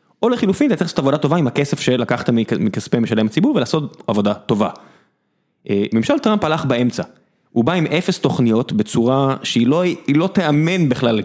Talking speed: 170 wpm